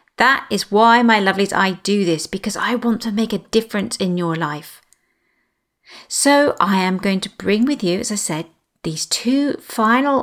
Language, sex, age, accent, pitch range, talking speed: English, female, 40-59, British, 180-240 Hz, 190 wpm